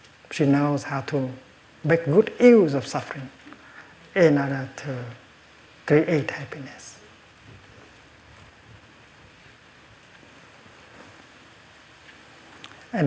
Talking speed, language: 70 wpm, English